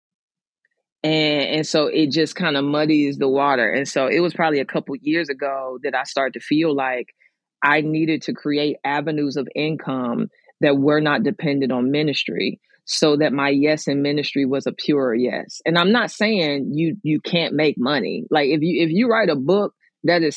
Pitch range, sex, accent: 145-175 Hz, female, American